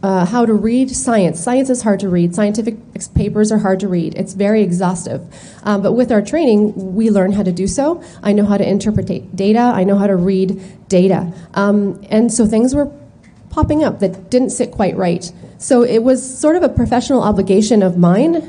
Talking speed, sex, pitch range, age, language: 210 wpm, female, 190-230 Hz, 30-49, English